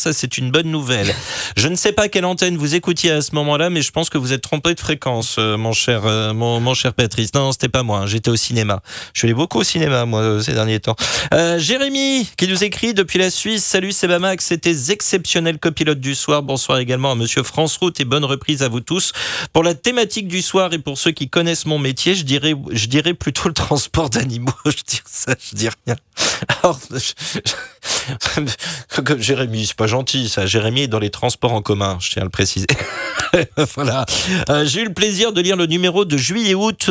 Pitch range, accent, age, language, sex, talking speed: 120-170 Hz, French, 30-49, French, male, 225 wpm